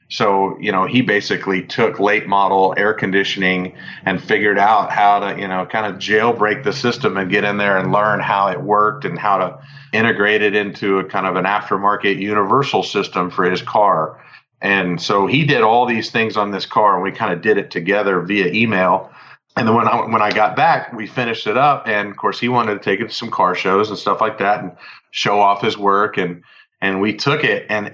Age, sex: 40-59, male